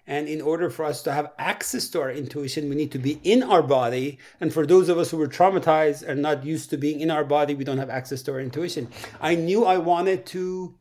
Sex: male